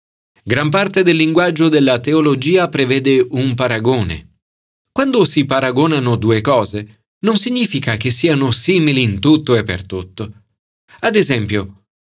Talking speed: 130 wpm